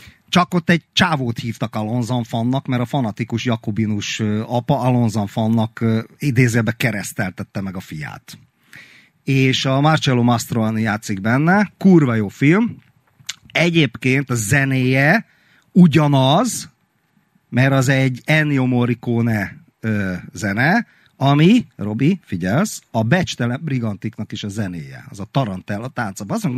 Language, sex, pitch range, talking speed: Hungarian, male, 110-150 Hz, 115 wpm